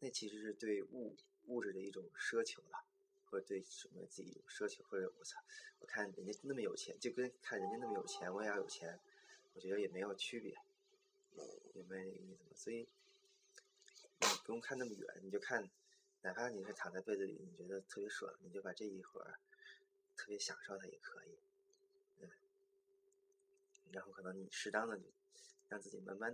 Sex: male